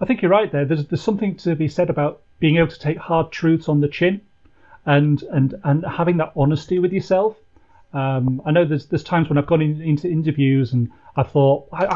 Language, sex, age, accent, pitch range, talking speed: English, male, 40-59, British, 145-185 Hz, 230 wpm